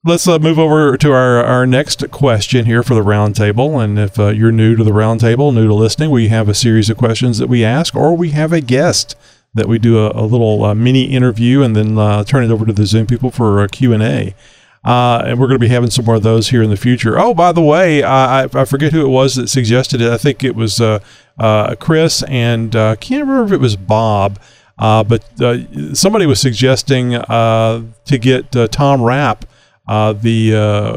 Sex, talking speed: male, 225 wpm